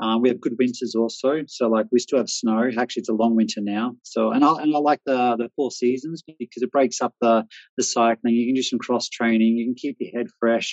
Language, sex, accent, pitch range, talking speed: English, male, Australian, 115-150 Hz, 265 wpm